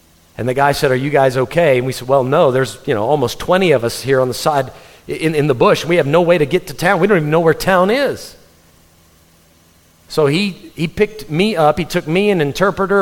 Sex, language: male, English